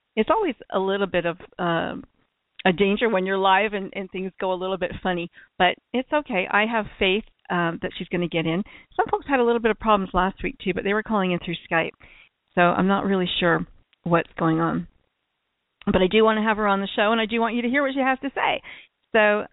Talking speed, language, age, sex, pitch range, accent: 250 wpm, English, 50-69, female, 180-215 Hz, American